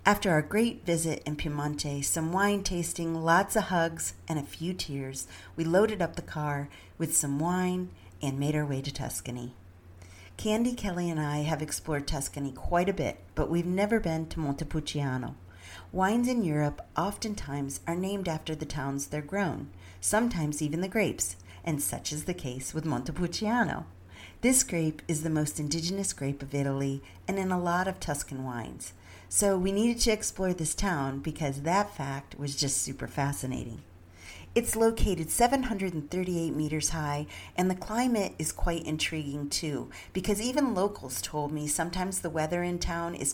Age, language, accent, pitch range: 50-69, English, American, 140-185 Hz